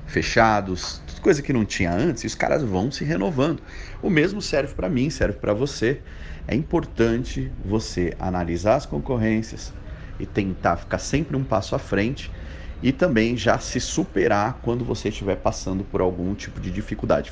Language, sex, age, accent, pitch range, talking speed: Portuguese, male, 30-49, Brazilian, 85-110 Hz, 165 wpm